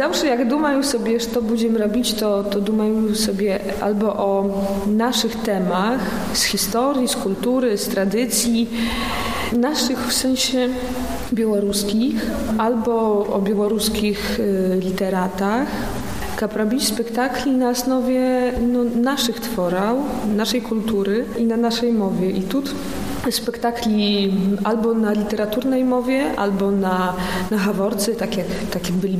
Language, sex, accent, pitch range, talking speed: Polish, female, native, 200-235 Hz, 120 wpm